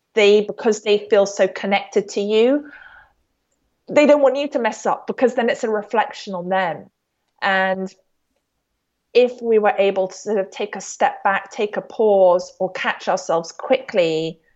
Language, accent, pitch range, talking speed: English, British, 190-230 Hz, 170 wpm